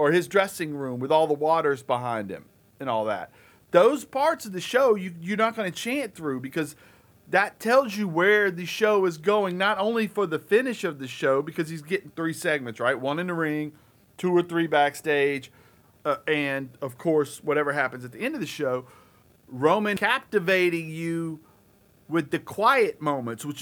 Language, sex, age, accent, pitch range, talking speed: English, male, 40-59, American, 140-180 Hz, 190 wpm